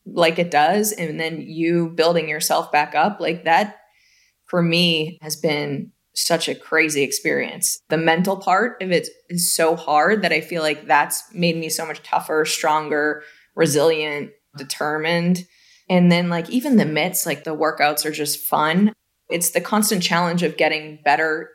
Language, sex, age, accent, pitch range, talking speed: English, female, 20-39, American, 150-175 Hz, 165 wpm